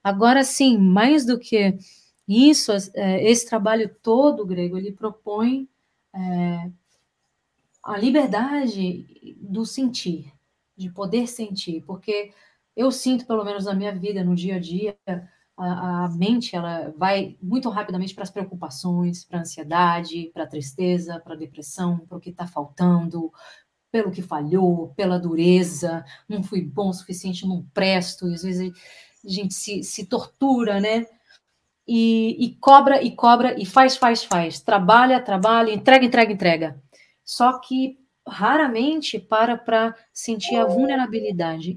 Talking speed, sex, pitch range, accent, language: 140 wpm, female, 180-230 Hz, Brazilian, Portuguese